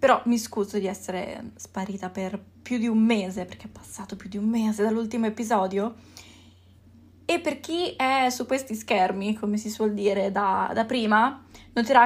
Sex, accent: female, native